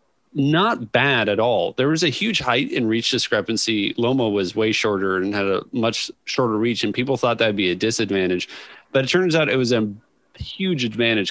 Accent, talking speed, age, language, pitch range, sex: American, 205 wpm, 30-49, English, 100-130 Hz, male